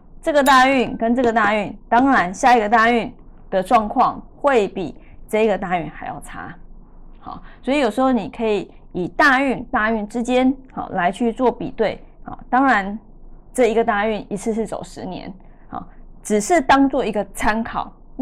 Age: 20-39